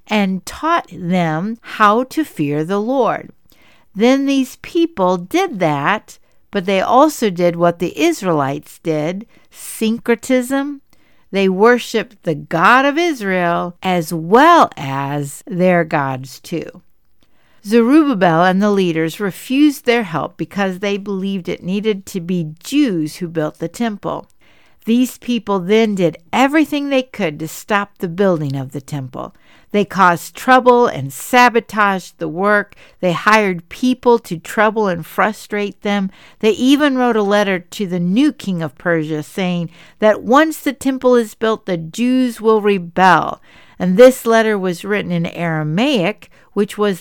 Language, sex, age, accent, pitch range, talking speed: English, female, 60-79, American, 175-235 Hz, 145 wpm